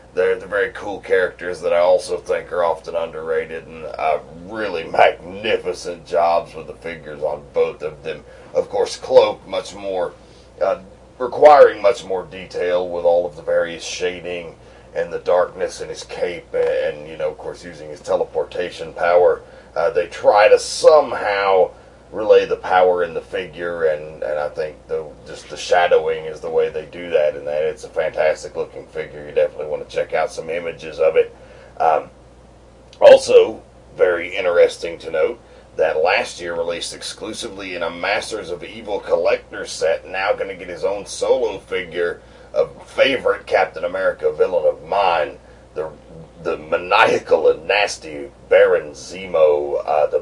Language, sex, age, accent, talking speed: English, male, 40-59, American, 165 wpm